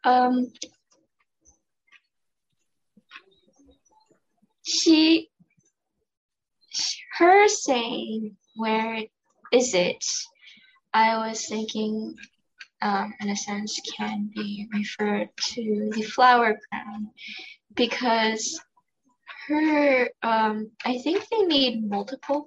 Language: English